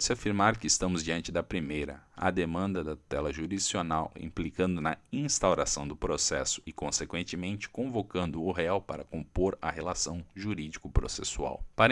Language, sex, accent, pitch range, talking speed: Portuguese, male, Brazilian, 75-105 Hz, 140 wpm